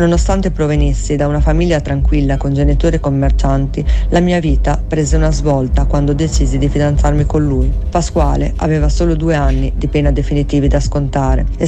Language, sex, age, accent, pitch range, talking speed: Italian, female, 30-49, native, 140-160 Hz, 170 wpm